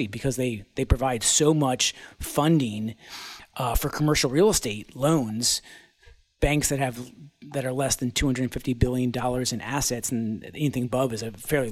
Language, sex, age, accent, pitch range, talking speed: English, male, 40-59, American, 125-150 Hz, 160 wpm